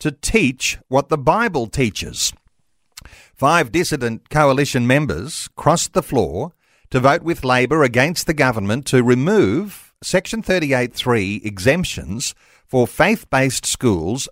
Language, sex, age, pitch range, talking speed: English, male, 50-69, 115-150 Hz, 115 wpm